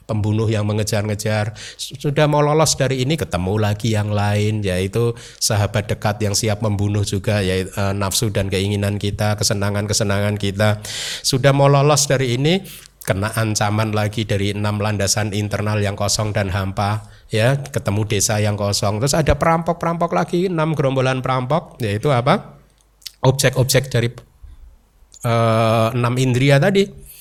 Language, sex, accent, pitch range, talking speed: Indonesian, male, native, 105-130 Hz, 140 wpm